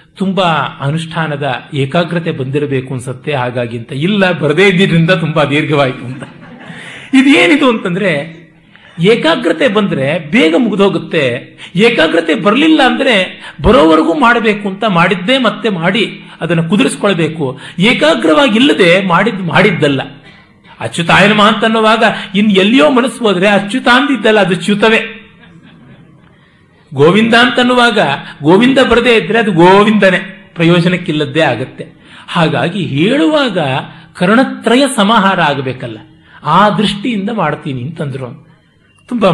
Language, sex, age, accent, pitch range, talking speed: Kannada, male, 50-69, native, 150-205 Hz, 100 wpm